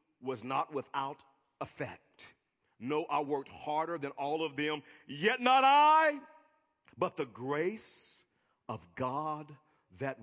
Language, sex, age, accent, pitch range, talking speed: English, male, 40-59, American, 130-195 Hz, 125 wpm